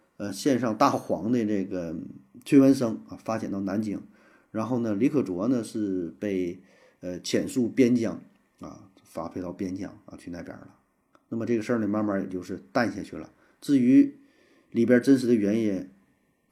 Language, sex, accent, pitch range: Chinese, male, native, 105-160 Hz